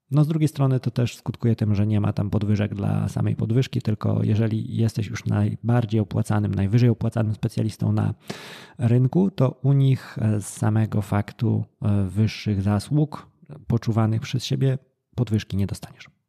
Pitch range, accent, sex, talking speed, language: 110-145 Hz, native, male, 150 wpm, Polish